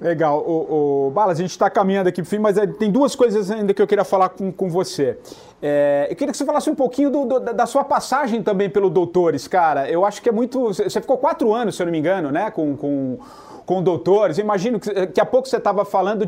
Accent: Brazilian